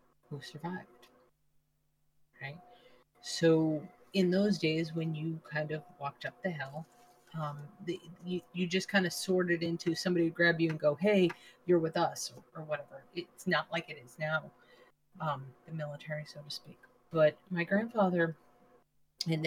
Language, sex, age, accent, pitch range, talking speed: English, female, 30-49, American, 145-170 Hz, 165 wpm